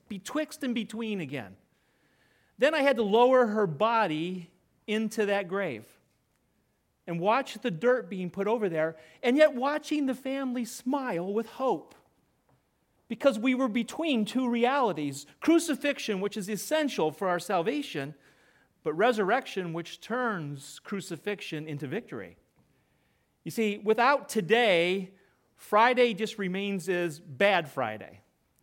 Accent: American